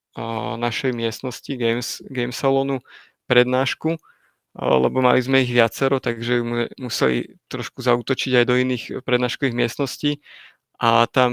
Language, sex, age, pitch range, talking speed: Slovak, male, 30-49, 120-135 Hz, 115 wpm